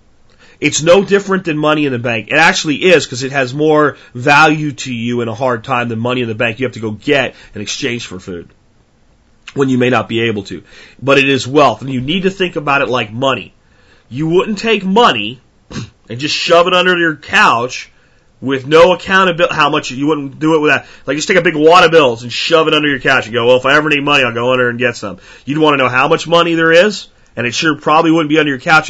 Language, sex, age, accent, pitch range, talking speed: English, male, 40-59, American, 120-155 Hz, 260 wpm